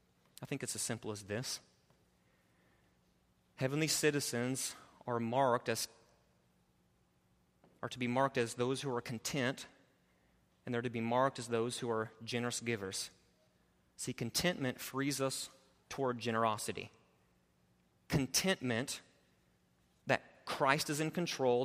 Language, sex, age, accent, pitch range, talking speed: English, male, 30-49, American, 115-150 Hz, 120 wpm